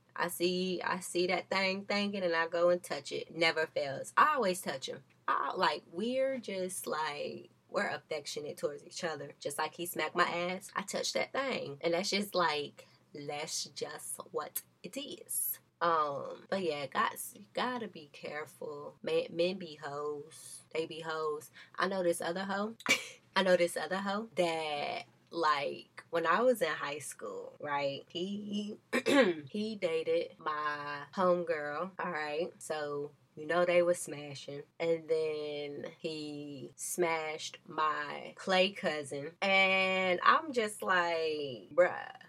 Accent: American